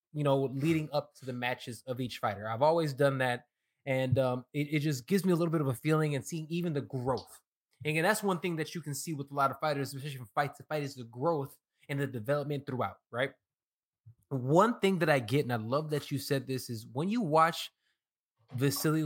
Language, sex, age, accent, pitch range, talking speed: English, male, 20-39, American, 130-170 Hz, 240 wpm